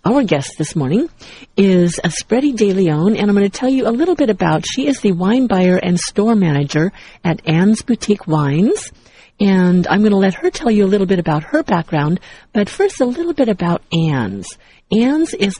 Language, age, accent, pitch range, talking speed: English, 50-69, American, 155-210 Hz, 205 wpm